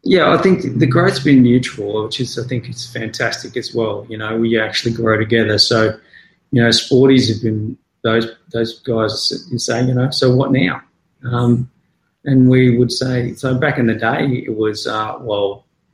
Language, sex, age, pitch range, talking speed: English, male, 30-49, 110-125 Hz, 190 wpm